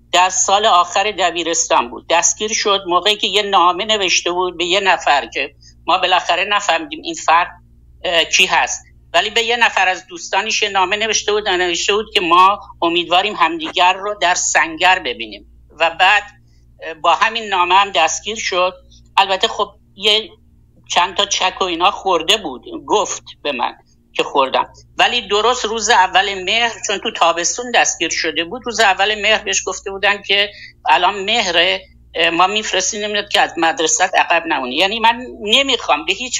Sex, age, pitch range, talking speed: male, 60-79, 170-215 Hz, 160 wpm